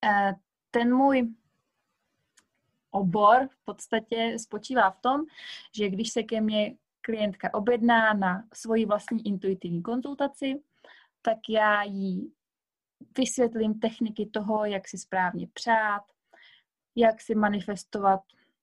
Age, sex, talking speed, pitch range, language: 20-39, female, 105 wpm, 210-235 Hz, Czech